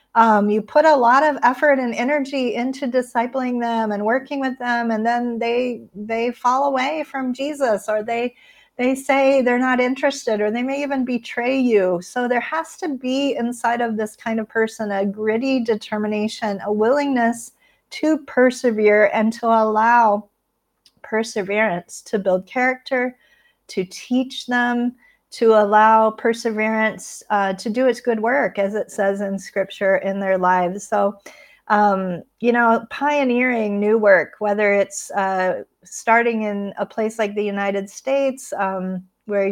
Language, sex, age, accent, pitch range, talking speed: English, female, 40-59, American, 210-250 Hz, 155 wpm